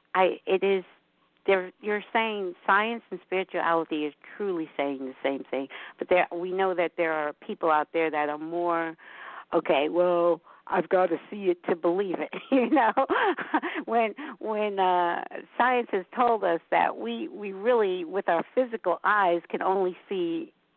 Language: English